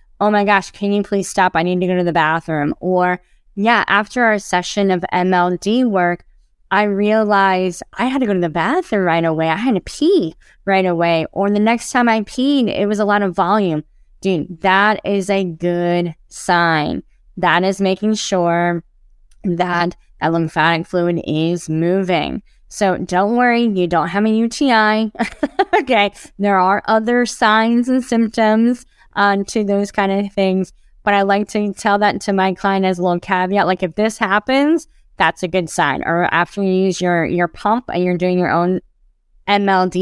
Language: English